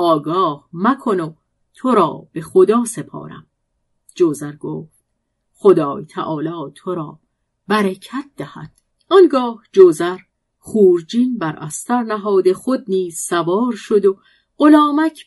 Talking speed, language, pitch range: 105 wpm, Persian, 165-225 Hz